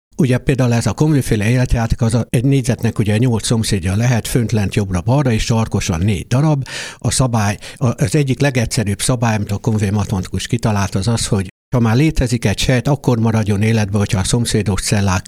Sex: male